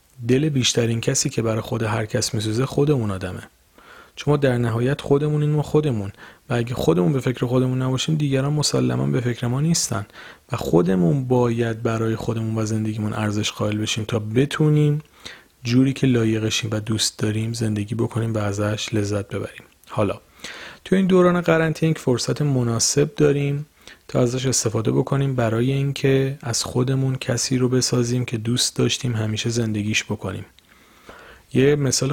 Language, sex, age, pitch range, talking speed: Persian, male, 40-59, 110-135 Hz, 155 wpm